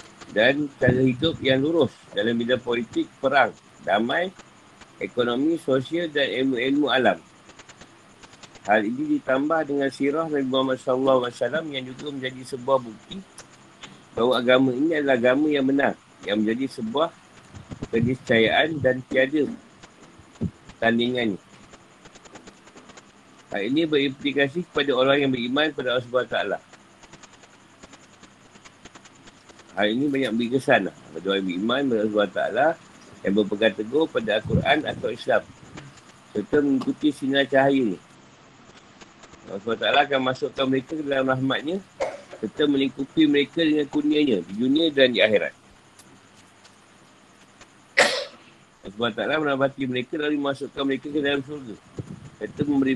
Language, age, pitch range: Malay, 50-69, 125-150 Hz